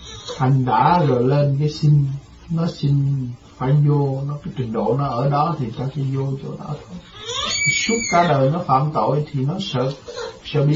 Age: 60-79